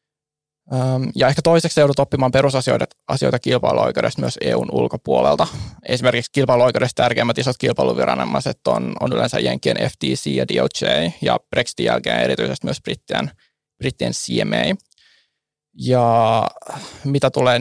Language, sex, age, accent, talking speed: Finnish, male, 20-39, native, 110 wpm